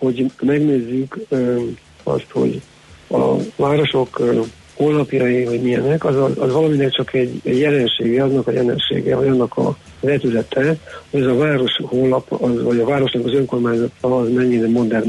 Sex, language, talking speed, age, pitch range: male, Hungarian, 150 wpm, 50-69, 120-135 Hz